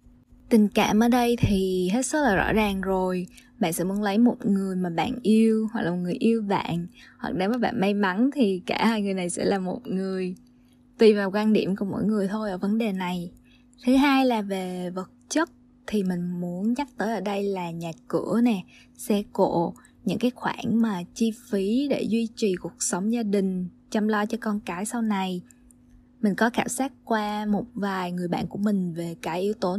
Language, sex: Vietnamese, female